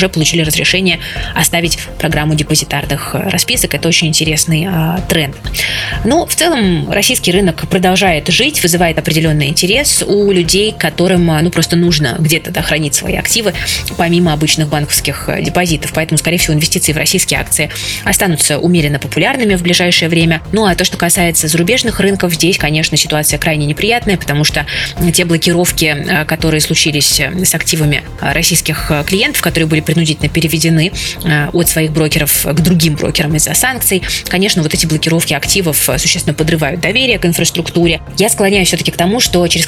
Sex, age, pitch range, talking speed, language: female, 20-39, 155-180 Hz, 155 wpm, Russian